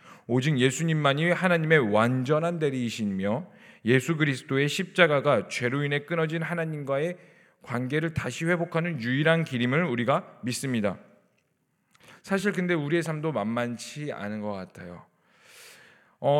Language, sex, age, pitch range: Korean, male, 40-59, 130-190 Hz